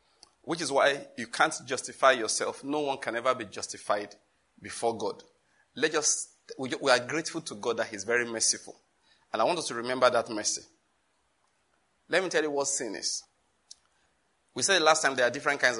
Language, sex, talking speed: English, male, 185 wpm